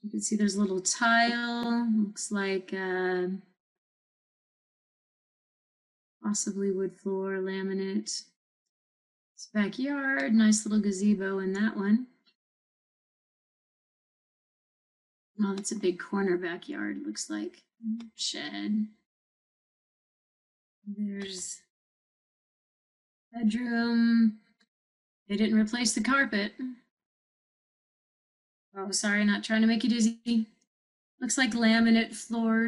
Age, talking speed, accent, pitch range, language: 30-49, 95 wpm, American, 200-235 Hz, English